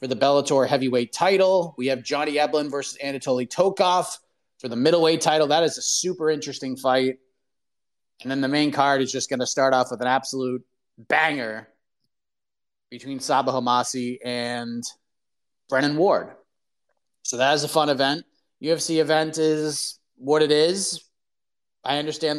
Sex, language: male, English